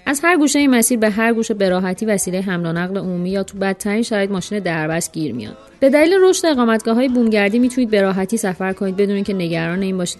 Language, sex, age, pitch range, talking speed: Persian, female, 30-49, 180-235 Hz, 220 wpm